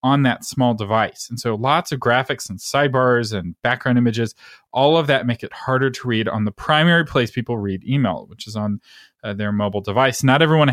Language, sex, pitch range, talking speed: English, male, 110-140 Hz, 215 wpm